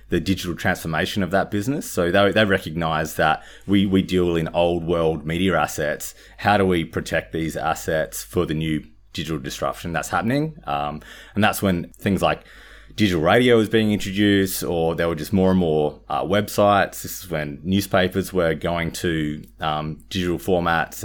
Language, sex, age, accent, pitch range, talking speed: English, male, 20-39, Australian, 80-95 Hz, 175 wpm